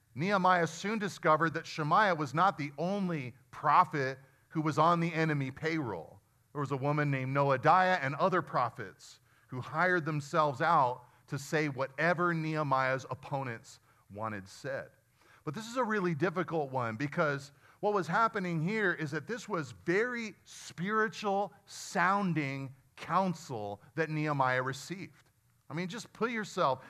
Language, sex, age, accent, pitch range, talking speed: English, male, 40-59, American, 135-170 Hz, 145 wpm